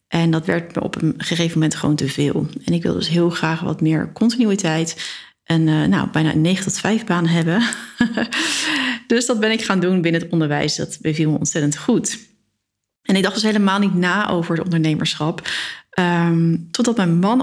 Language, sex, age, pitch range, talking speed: Dutch, female, 40-59, 165-210 Hz, 195 wpm